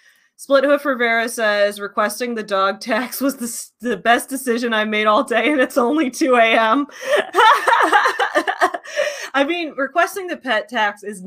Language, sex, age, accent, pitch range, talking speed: English, female, 20-39, American, 180-240 Hz, 155 wpm